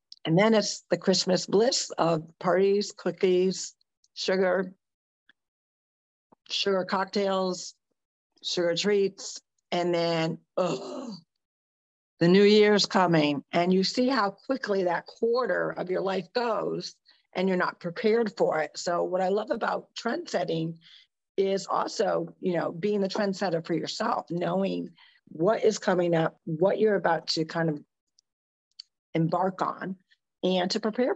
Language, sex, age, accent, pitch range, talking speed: English, female, 50-69, American, 165-200 Hz, 135 wpm